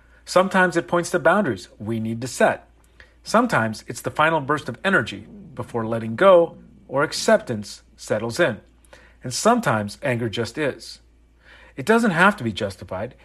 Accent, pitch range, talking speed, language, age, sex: American, 110-155 Hz, 155 wpm, English, 40-59, male